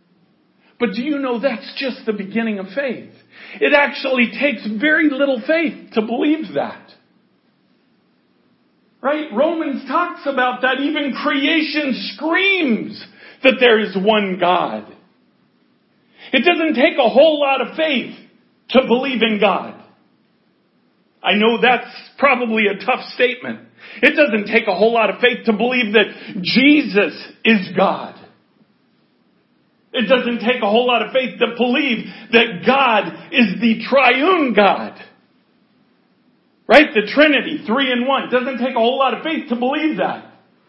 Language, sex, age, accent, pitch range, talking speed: English, male, 50-69, American, 215-275 Hz, 145 wpm